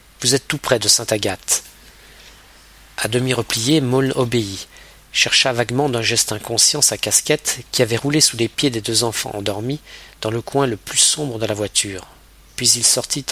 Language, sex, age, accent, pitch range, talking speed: French, male, 40-59, French, 105-130 Hz, 190 wpm